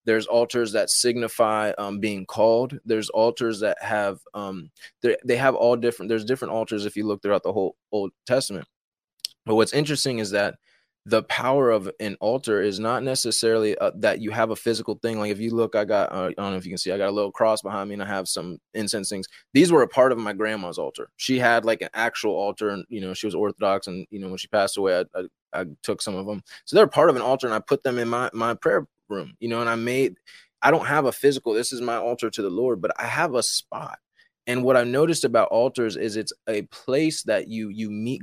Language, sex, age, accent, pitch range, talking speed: English, male, 20-39, American, 105-120 Hz, 250 wpm